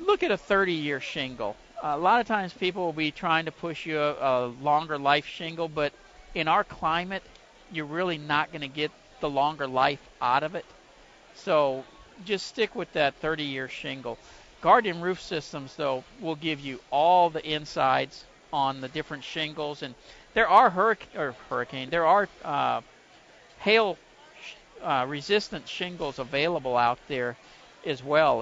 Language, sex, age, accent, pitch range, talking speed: English, male, 50-69, American, 140-175 Hz, 165 wpm